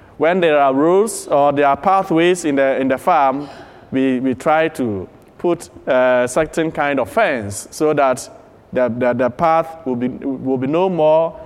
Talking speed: 190 wpm